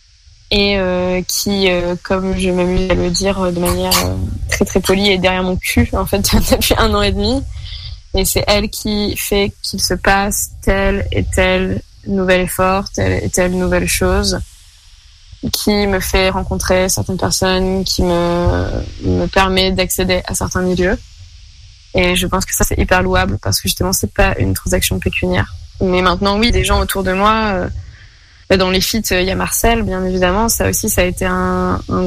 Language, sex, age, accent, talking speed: French, female, 20-39, French, 185 wpm